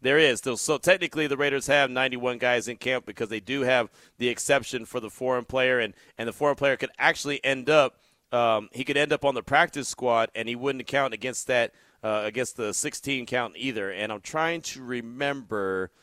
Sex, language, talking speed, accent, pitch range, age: male, English, 215 wpm, American, 115-150 Hz, 30-49